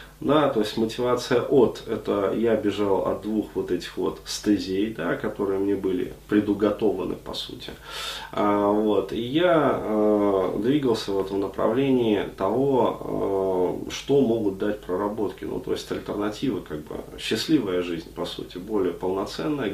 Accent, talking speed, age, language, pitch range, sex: native, 145 wpm, 30-49, Russian, 95-120 Hz, male